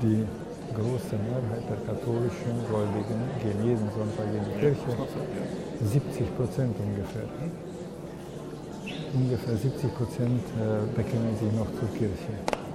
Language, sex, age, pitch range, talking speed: Slovak, male, 50-69, 105-125 Hz, 110 wpm